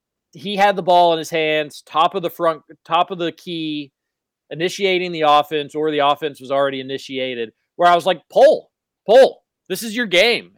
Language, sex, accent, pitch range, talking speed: English, male, American, 150-190 Hz, 195 wpm